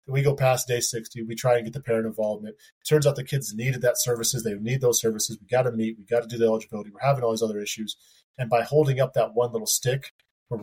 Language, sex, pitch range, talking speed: English, male, 110-135 Hz, 275 wpm